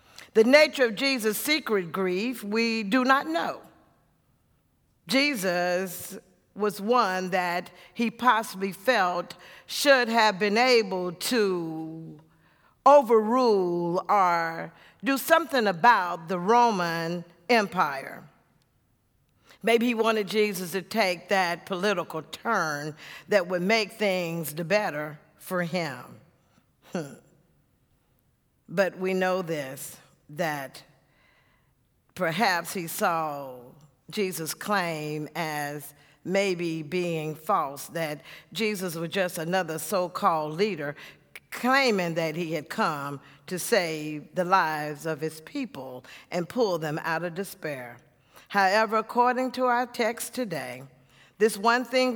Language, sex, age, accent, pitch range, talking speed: English, female, 50-69, American, 160-225 Hz, 110 wpm